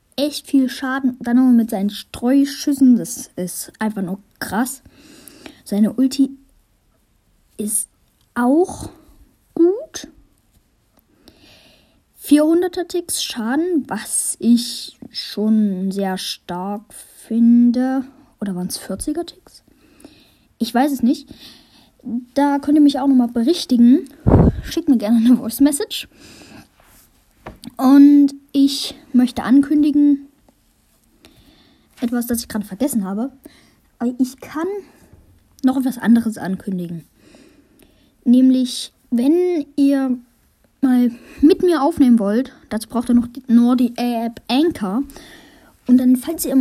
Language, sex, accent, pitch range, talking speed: German, female, German, 230-285 Hz, 110 wpm